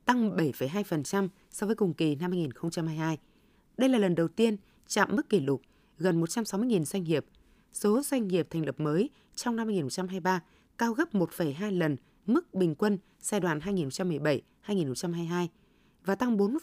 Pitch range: 170-215 Hz